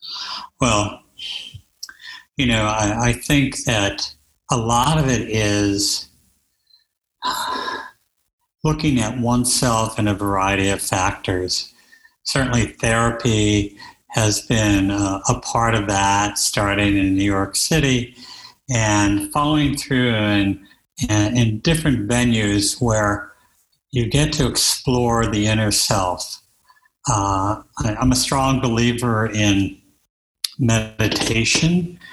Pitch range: 105-130 Hz